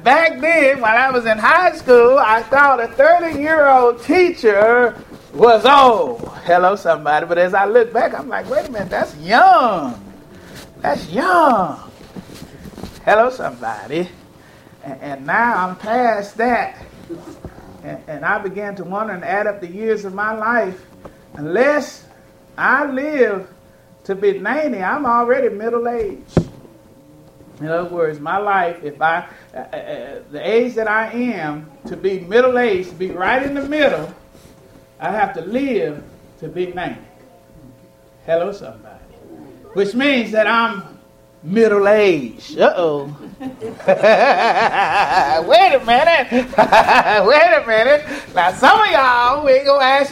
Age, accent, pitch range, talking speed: 40-59, American, 195-285 Hz, 140 wpm